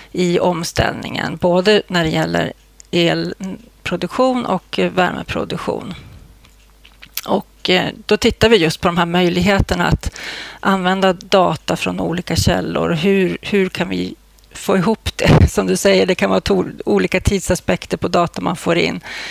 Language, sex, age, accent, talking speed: Swedish, female, 30-49, native, 140 wpm